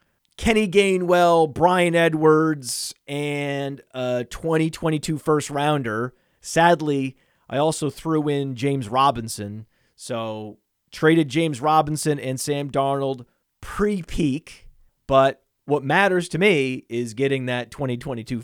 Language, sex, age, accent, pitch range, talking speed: English, male, 30-49, American, 120-170 Hz, 110 wpm